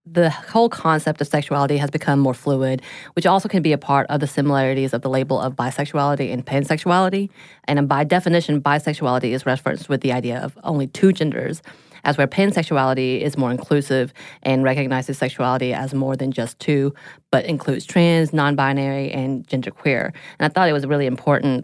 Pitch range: 135-160 Hz